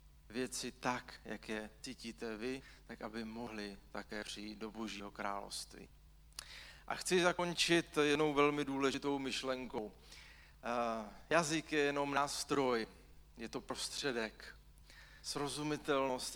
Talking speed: 105 wpm